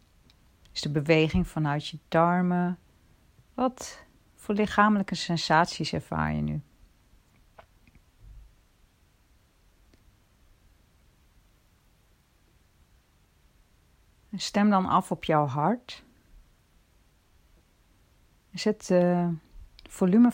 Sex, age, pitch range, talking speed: female, 40-59, 140-185 Hz, 70 wpm